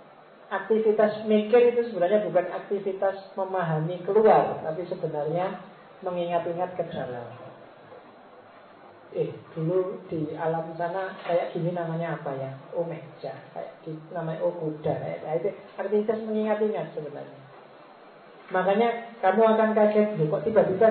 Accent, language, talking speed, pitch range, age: native, Indonesian, 105 wpm, 160-200 Hz, 40-59